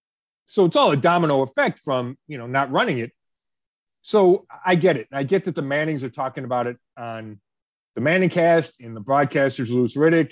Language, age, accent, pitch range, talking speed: English, 30-49, American, 125-165 Hz, 200 wpm